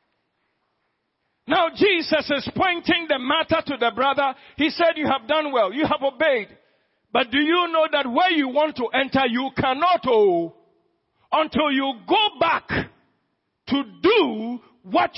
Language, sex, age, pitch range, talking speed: English, male, 50-69, 180-295 Hz, 150 wpm